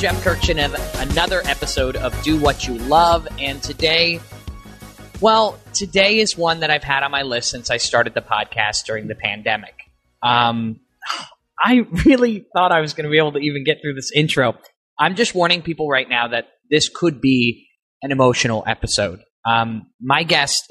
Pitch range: 115-150 Hz